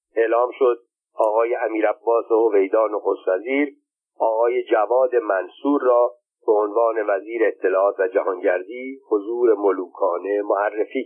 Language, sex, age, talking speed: Persian, male, 50-69, 110 wpm